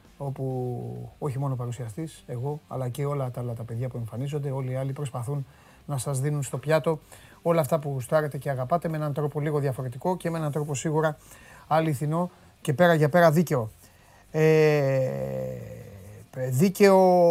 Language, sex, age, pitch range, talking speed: Greek, male, 30-49, 125-160 Hz, 160 wpm